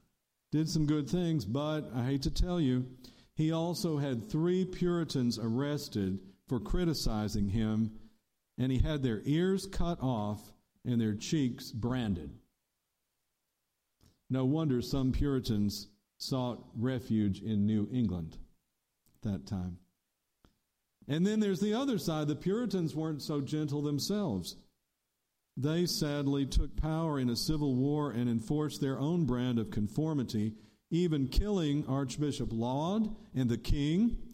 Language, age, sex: English, 50-69, male